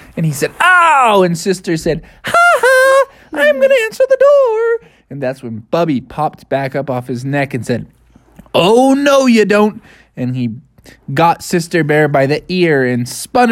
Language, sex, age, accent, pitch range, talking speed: English, male, 20-39, American, 130-205 Hz, 180 wpm